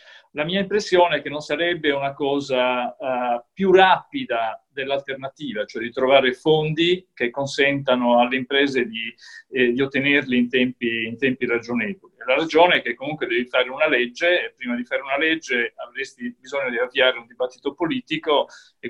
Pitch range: 125-175 Hz